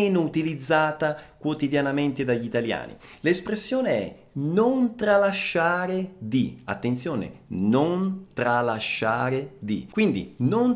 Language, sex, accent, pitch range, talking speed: Italian, male, native, 140-195 Hz, 85 wpm